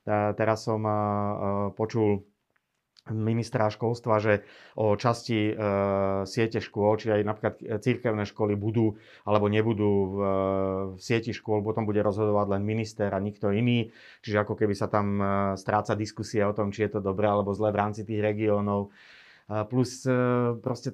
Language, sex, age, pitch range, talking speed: Slovak, male, 30-49, 105-120 Hz, 145 wpm